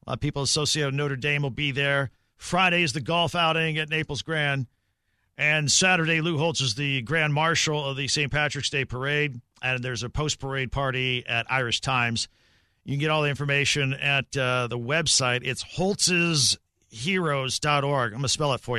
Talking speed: 190 wpm